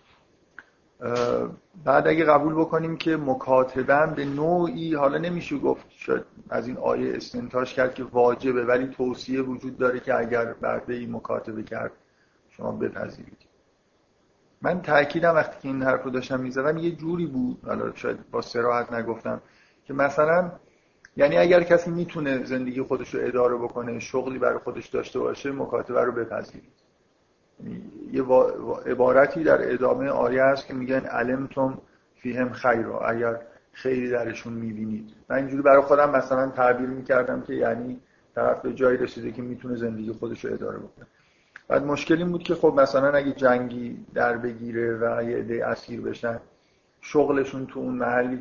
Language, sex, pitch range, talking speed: Persian, male, 120-145 Hz, 150 wpm